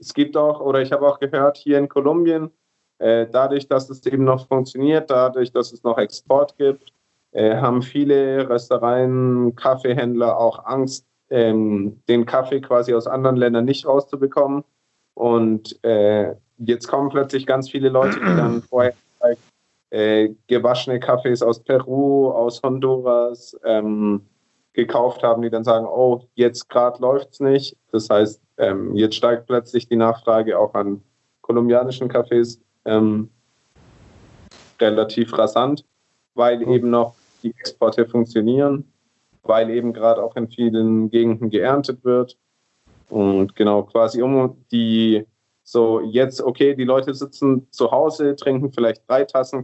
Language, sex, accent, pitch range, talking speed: German, male, German, 115-135 Hz, 135 wpm